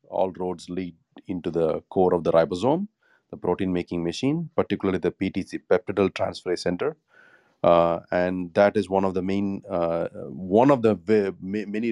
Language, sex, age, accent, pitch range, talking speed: English, male, 30-49, Indian, 85-100 Hz, 155 wpm